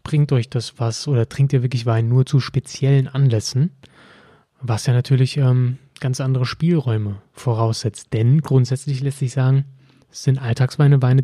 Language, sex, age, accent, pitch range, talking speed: German, male, 30-49, German, 120-140 Hz, 160 wpm